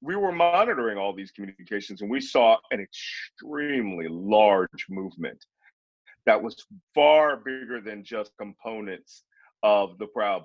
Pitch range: 105-135 Hz